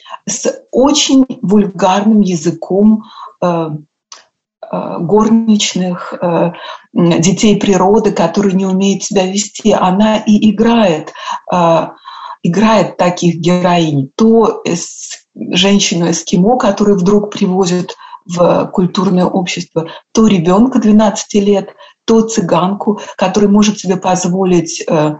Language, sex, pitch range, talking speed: Russian, female, 180-220 Hz, 100 wpm